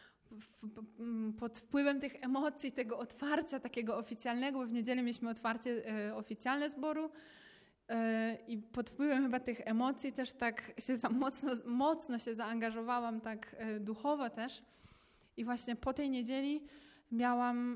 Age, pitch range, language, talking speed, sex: 20-39, 225-275 Hz, Polish, 140 wpm, female